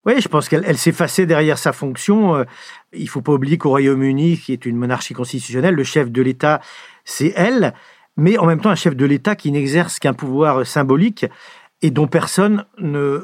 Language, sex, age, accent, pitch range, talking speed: French, male, 50-69, French, 140-175 Hz, 195 wpm